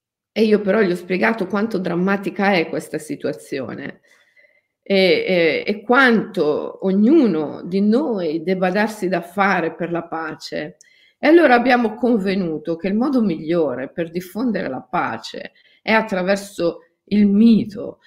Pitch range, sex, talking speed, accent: 175-245 Hz, female, 135 wpm, native